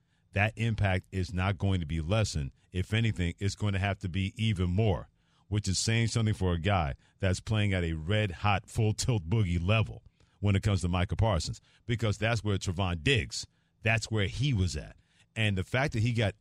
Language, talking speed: English, 200 wpm